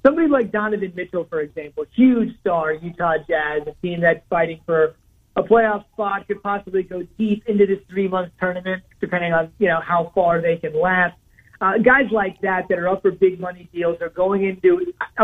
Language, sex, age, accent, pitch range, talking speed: English, male, 30-49, American, 165-200 Hz, 190 wpm